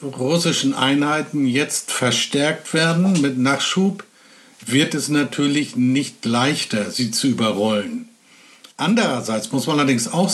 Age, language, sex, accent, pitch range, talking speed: 60-79, German, male, German, 125-175 Hz, 115 wpm